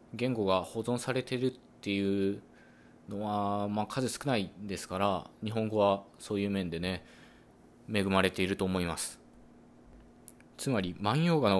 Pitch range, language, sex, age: 90-125 Hz, Japanese, male, 20-39